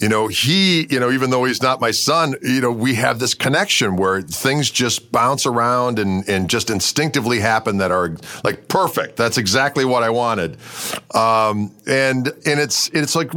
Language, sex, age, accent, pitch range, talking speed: English, male, 40-59, American, 115-150 Hz, 190 wpm